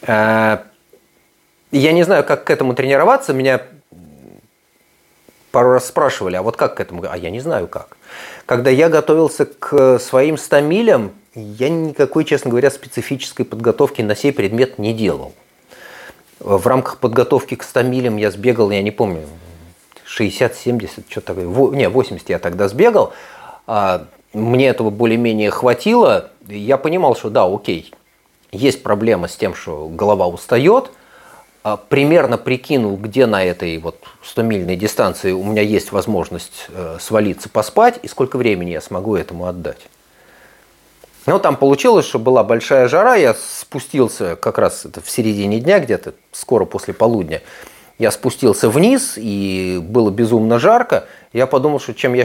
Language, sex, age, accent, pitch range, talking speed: Russian, male, 30-49, native, 105-135 Hz, 140 wpm